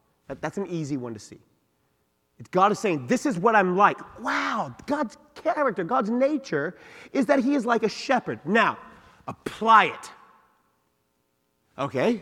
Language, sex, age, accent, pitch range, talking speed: English, male, 30-49, American, 125-205 Hz, 145 wpm